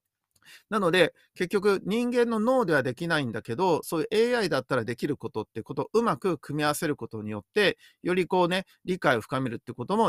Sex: male